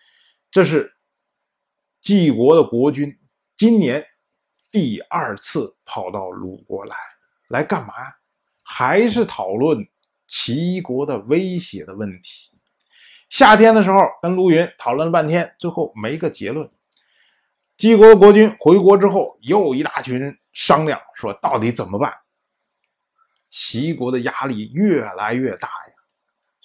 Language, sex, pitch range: Chinese, male, 135-225 Hz